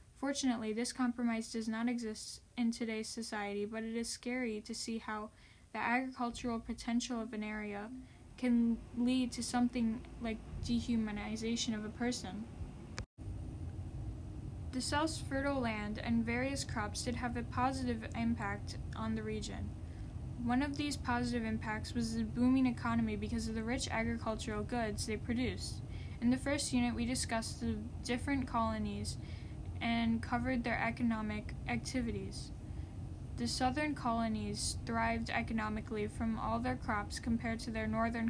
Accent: American